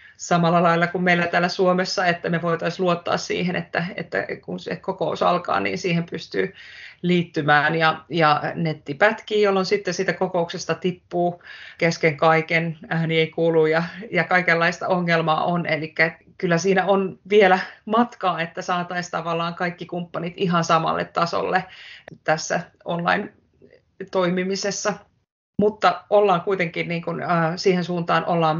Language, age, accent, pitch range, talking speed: Finnish, 30-49, native, 165-190 Hz, 135 wpm